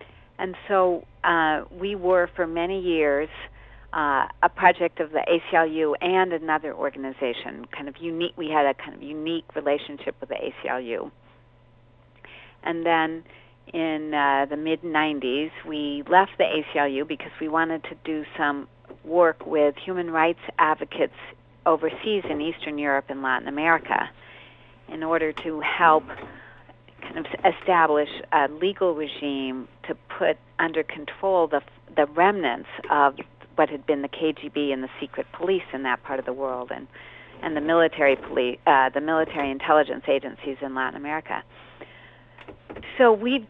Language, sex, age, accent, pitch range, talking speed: English, female, 50-69, American, 145-170 Hz, 145 wpm